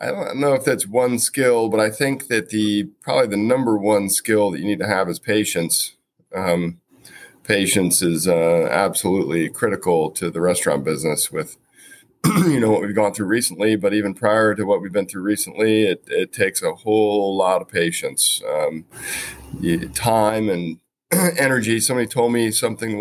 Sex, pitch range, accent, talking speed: male, 100-120 Hz, American, 175 wpm